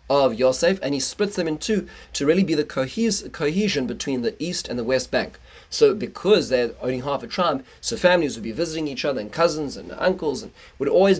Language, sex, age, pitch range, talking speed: English, male, 30-49, 130-170 Hz, 220 wpm